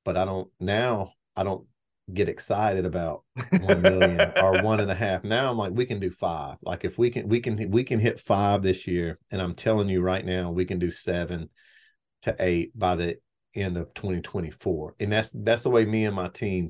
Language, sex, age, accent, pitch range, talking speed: English, male, 40-59, American, 90-105 Hz, 220 wpm